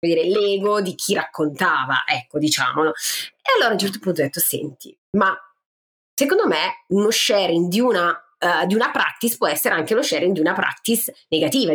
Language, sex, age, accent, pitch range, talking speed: Italian, female, 30-49, native, 170-245 Hz, 180 wpm